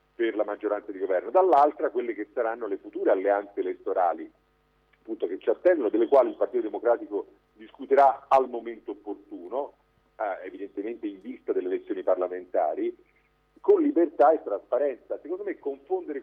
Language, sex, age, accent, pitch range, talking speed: Italian, male, 50-69, native, 330-400 Hz, 150 wpm